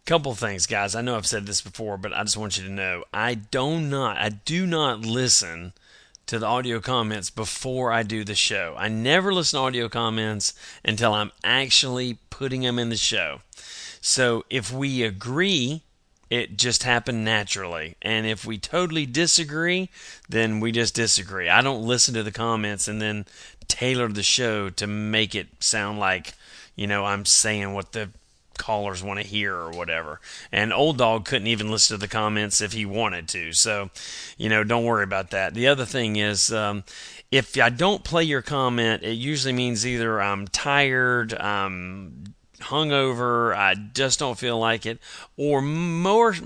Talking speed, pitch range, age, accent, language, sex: 180 wpm, 105-130 Hz, 30-49, American, English, male